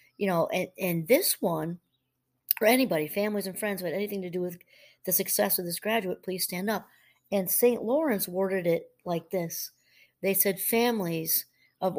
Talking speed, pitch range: 180 wpm, 165-205 Hz